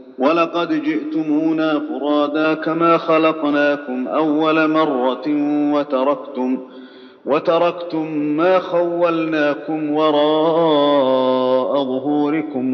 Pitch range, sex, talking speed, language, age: 130-155 Hz, male, 60 wpm, Arabic, 40-59